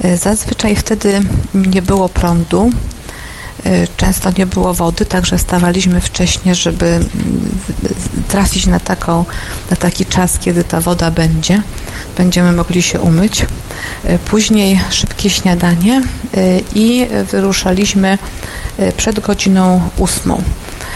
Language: Polish